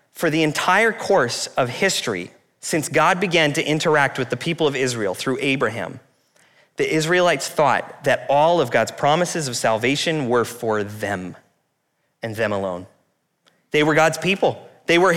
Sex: male